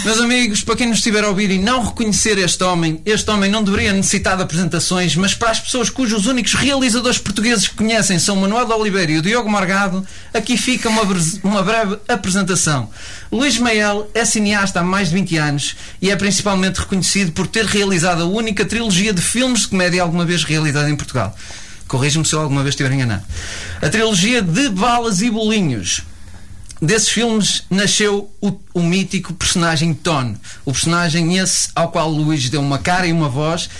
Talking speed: 190 wpm